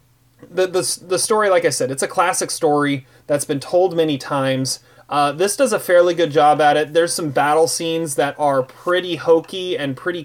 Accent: American